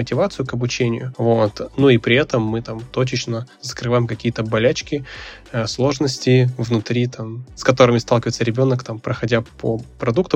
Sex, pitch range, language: male, 115-125 Hz, Russian